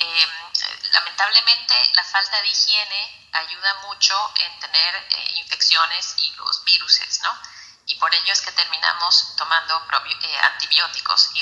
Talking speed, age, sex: 130 wpm, 30-49, female